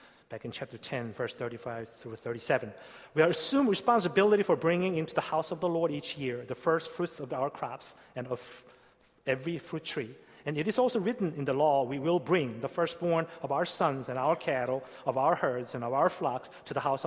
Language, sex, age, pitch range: Korean, male, 30-49, 125-165 Hz